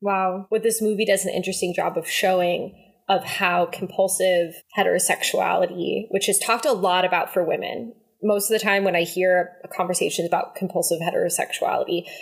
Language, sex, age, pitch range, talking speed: English, female, 10-29, 180-205 Hz, 165 wpm